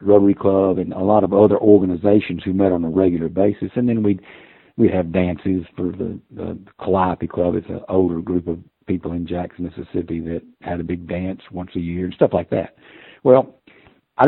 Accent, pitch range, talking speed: American, 90-105 Hz, 200 wpm